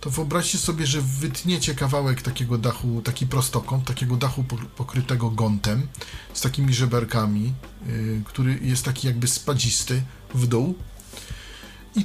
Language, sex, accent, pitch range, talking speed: Polish, male, native, 115-160 Hz, 125 wpm